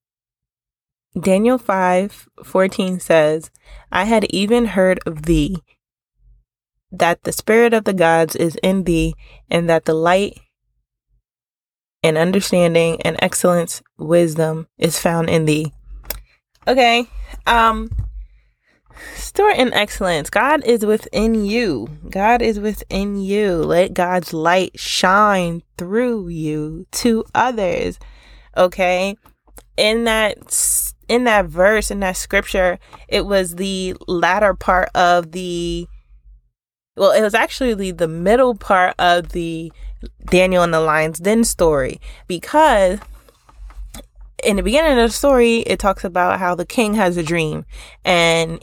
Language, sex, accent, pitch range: English, female, American, 165-215 Hz